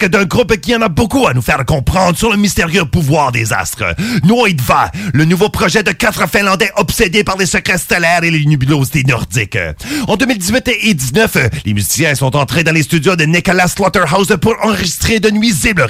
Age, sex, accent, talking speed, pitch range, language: 40-59, male, French, 195 wpm, 150-215 Hz, French